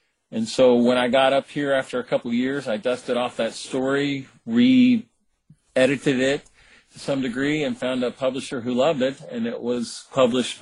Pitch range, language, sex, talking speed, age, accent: 115-140 Hz, English, male, 185 wpm, 50-69, American